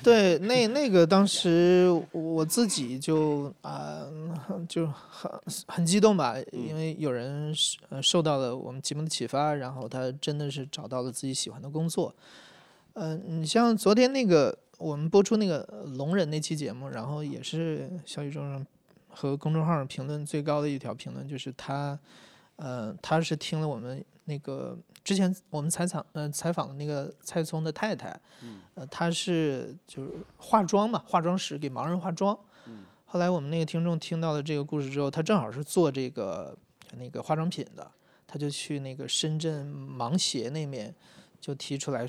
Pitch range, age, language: 135-175 Hz, 20-39, Chinese